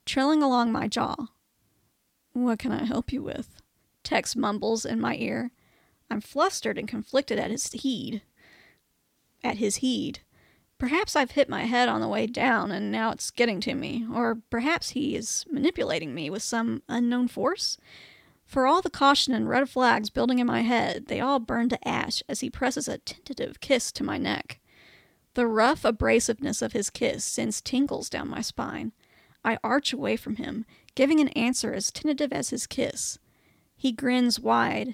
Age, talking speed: 30-49, 175 wpm